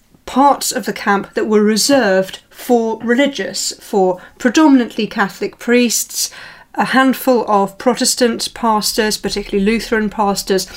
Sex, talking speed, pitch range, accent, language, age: female, 115 wpm, 200-260 Hz, British, English, 40-59